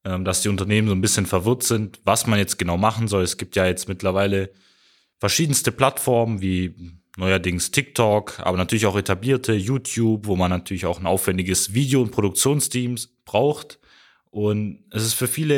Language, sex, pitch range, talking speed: German, male, 105-130 Hz, 170 wpm